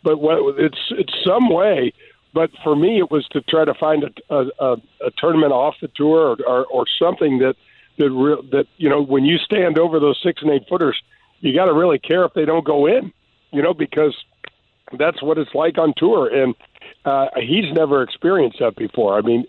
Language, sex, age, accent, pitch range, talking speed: English, male, 50-69, American, 125-160 Hz, 210 wpm